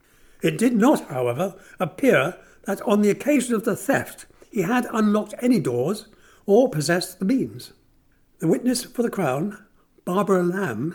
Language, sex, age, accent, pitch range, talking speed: English, male, 60-79, British, 155-225 Hz, 155 wpm